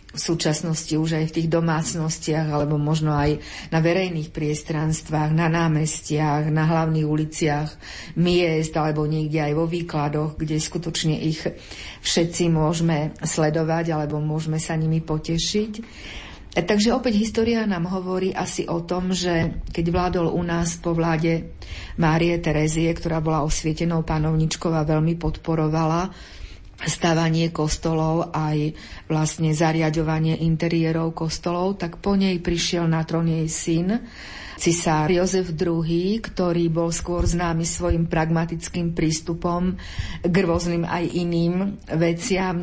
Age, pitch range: 50-69, 155-175 Hz